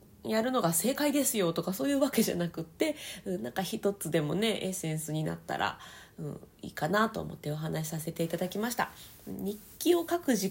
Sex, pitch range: female, 170-230 Hz